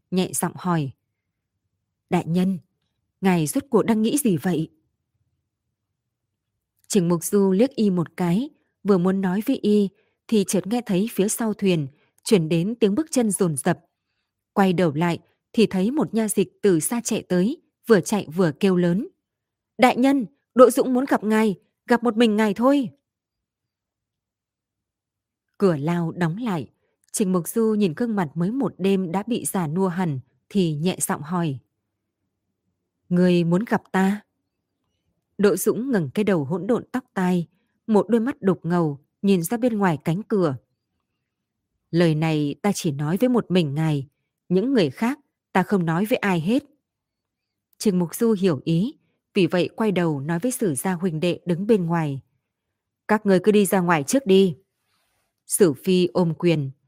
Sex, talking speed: female, 170 wpm